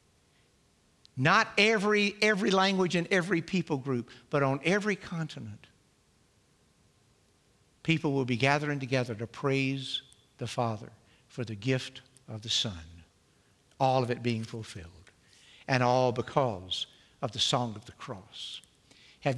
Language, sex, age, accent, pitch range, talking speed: English, male, 60-79, American, 120-165 Hz, 130 wpm